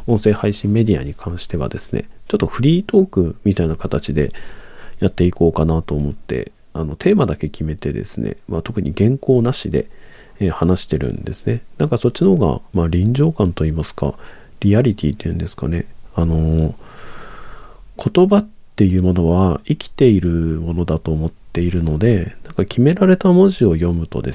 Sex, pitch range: male, 85-115 Hz